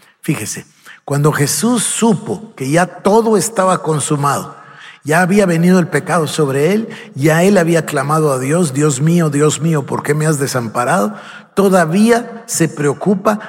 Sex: male